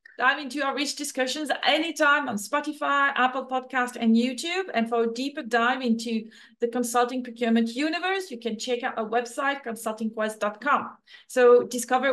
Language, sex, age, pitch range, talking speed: English, female, 40-59, 230-275 Hz, 155 wpm